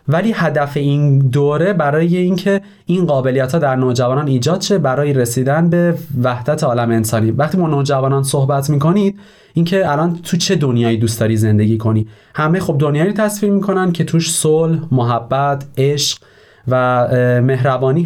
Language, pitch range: Persian, 125-175 Hz